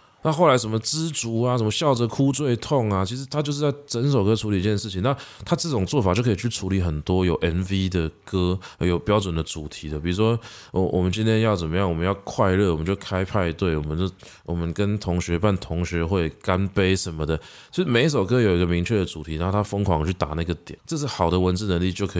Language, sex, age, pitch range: Chinese, male, 20-39, 85-110 Hz